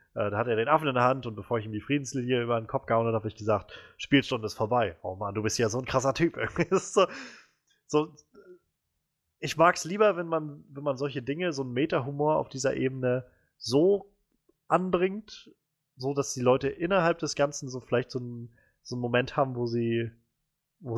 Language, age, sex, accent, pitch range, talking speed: German, 20-39, male, German, 120-150 Hz, 205 wpm